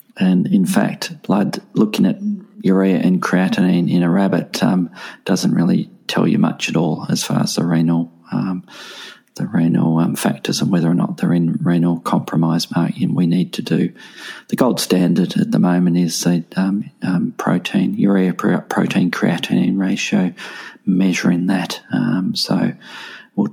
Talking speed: 160 wpm